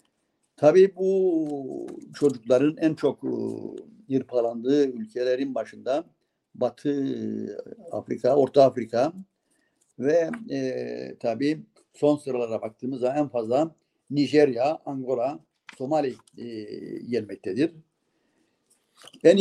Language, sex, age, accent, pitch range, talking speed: Turkish, male, 60-79, native, 120-145 Hz, 80 wpm